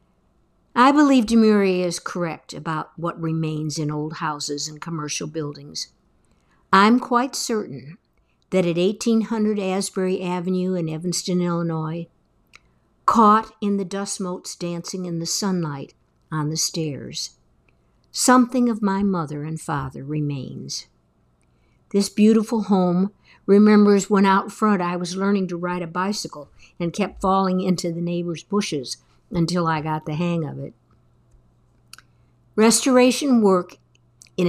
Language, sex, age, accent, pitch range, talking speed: English, female, 60-79, American, 150-195 Hz, 130 wpm